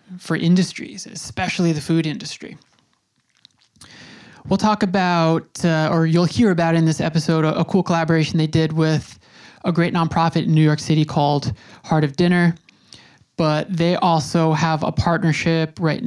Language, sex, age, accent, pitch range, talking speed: English, male, 20-39, American, 155-185 Hz, 155 wpm